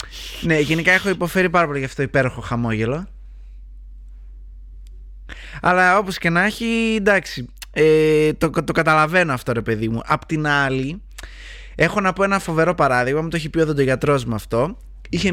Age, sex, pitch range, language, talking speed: 20-39, male, 120-165 Hz, Greek, 170 wpm